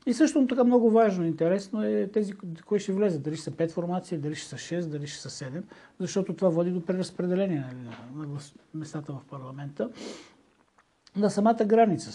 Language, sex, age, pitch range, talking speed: Bulgarian, male, 60-79, 155-200 Hz, 185 wpm